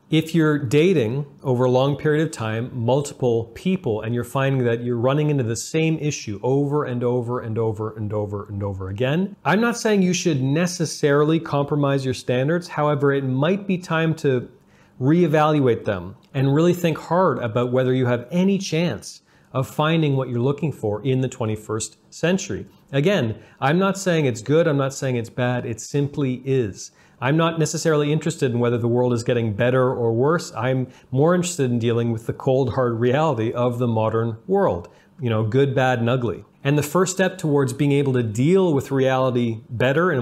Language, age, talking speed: English, 40-59, 190 wpm